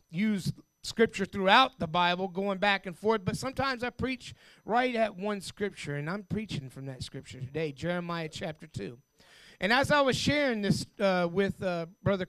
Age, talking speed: 30-49, 180 wpm